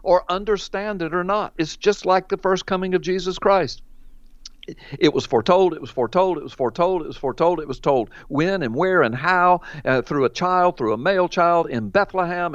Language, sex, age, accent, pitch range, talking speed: English, male, 60-79, American, 150-200 Hz, 215 wpm